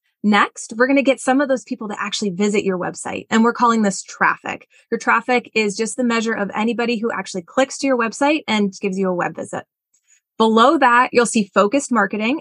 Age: 20-39